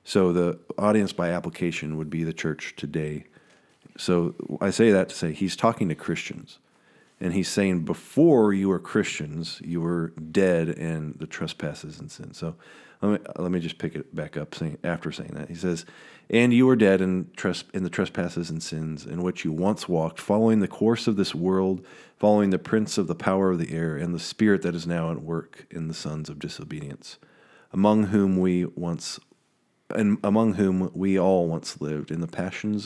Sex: male